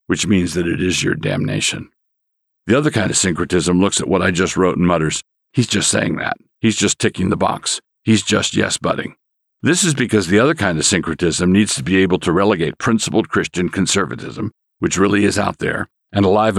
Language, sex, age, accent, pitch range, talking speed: English, male, 50-69, American, 90-105 Hz, 205 wpm